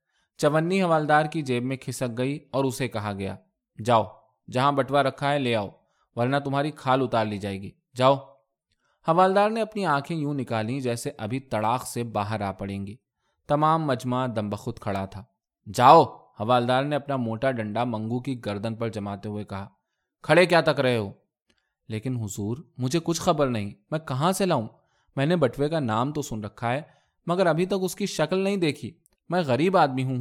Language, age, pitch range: Urdu, 20-39, 110-150 Hz